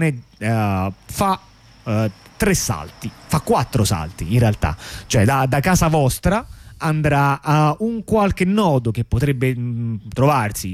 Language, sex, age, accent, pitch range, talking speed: Italian, male, 30-49, native, 115-155 Hz, 115 wpm